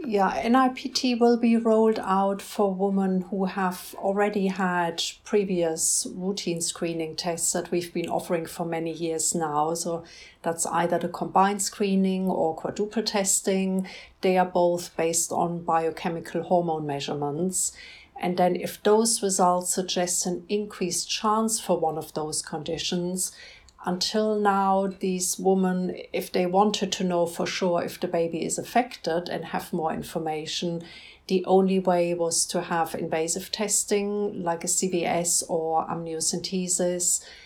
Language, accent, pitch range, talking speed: English, German, 170-195 Hz, 140 wpm